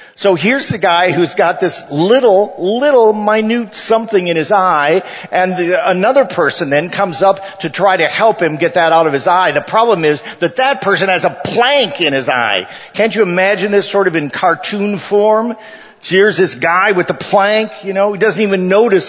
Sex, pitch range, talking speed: male, 135-195 Hz, 200 wpm